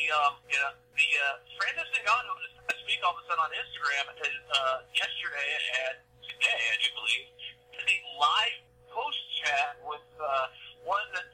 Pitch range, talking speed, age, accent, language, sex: 125-180 Hz, 170 wpm, 50-69, American, English, male